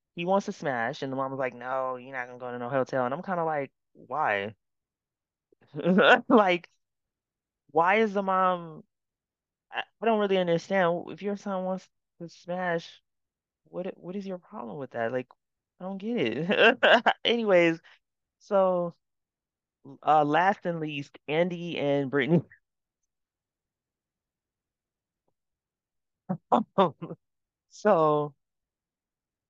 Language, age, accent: English, 20-39, American